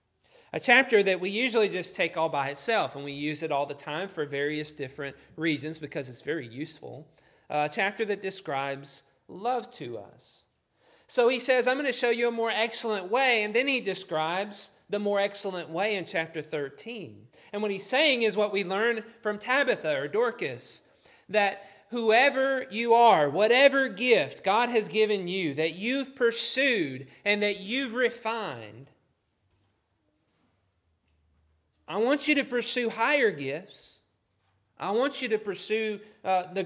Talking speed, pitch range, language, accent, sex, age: 160 wpm, 140-220 Hz, English, American, male, 40-59